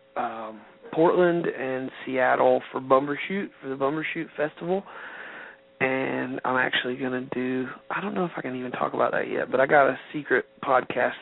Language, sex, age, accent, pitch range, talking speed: English, male, 40-59, American, 120-140 Hz, 175 wpm